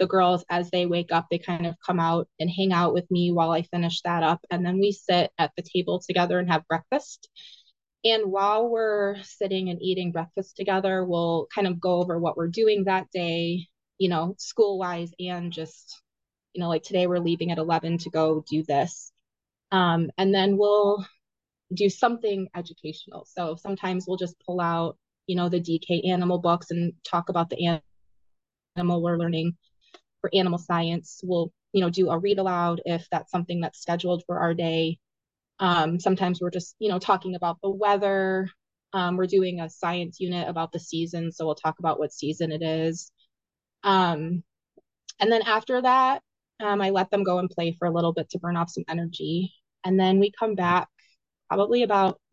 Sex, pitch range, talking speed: female, 170-190 Hz, 190 wpm